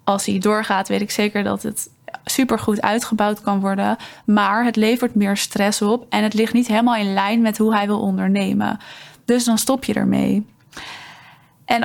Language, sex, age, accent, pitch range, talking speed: Dutch, female, 20-39, Dutch, 200-225 Hz, 180 wpm